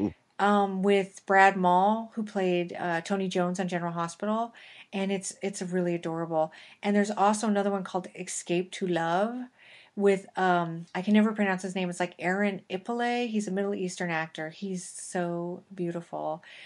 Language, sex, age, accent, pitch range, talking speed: English, female, 30-49, American, 175-205 Hz, 165 wpm